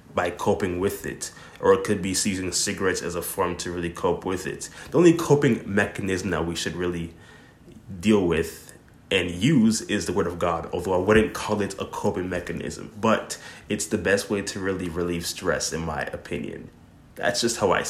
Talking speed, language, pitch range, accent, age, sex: 200 wpm, English, 90-110 Hz, American, 20-39, male